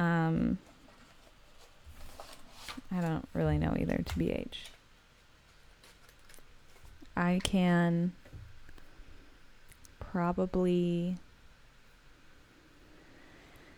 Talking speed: 50 wpm